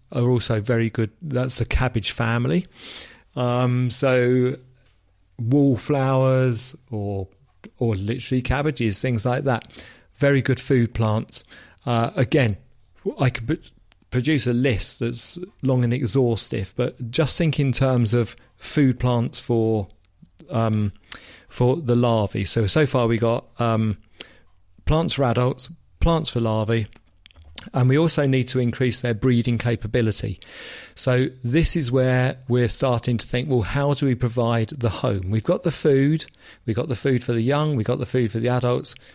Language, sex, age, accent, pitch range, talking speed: English, male, 40-59, British, 115-130 Hz, 155 wpm